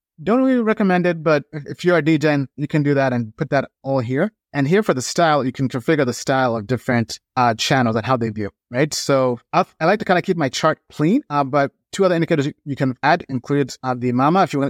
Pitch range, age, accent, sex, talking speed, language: 130-170 Hz, 30-49, American, male, 250 wpm, English